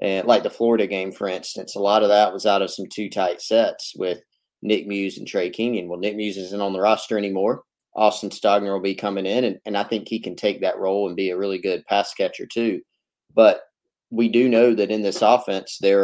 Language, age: English, 30-49